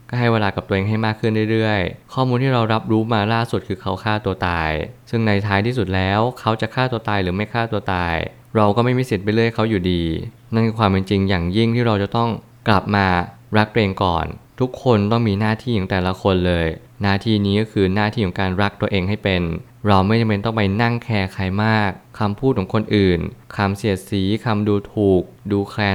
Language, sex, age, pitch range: Thai, male, 20-39, 95-115 Hz